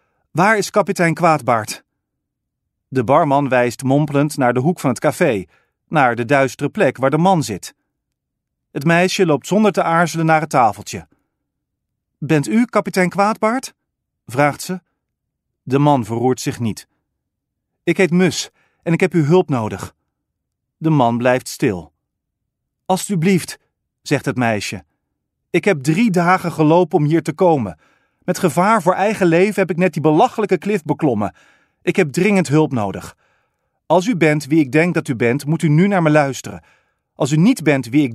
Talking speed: 165 wpm